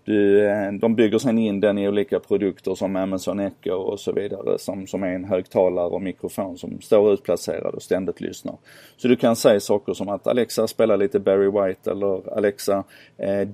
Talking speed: 190 wpm